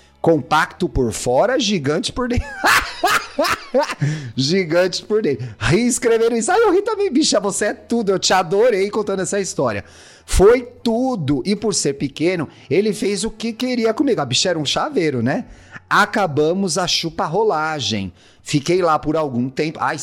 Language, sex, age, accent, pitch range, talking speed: Portuguese, male, 30-49, Brazilian, 140-200 Hz, 160 wpm